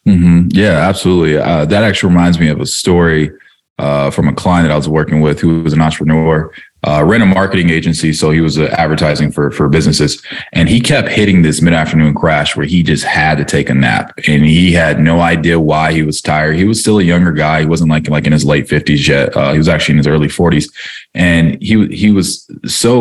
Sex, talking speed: male, 230 wpm